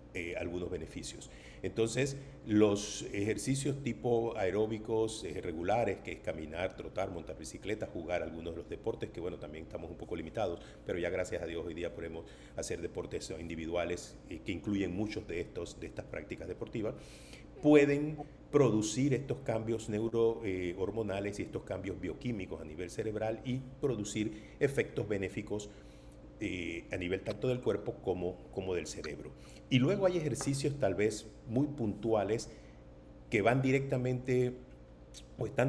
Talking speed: 150 wpm